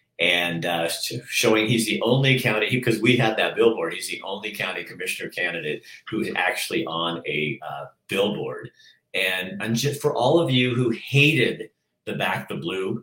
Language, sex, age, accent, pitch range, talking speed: English, male, 50-69, American, 100-130 Hz, 175 wpm